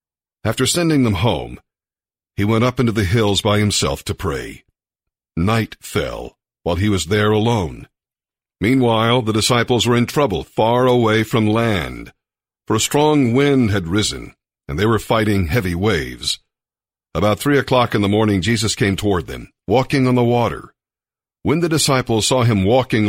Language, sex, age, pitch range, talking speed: English, male, 50-69, 100-130 Hz, 165 wpm